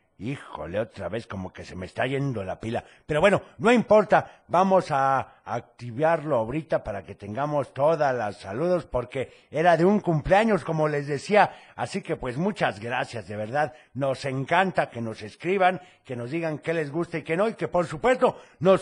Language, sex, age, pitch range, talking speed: Spanish, male, 60-79, 120-185 Hz, 190 wpm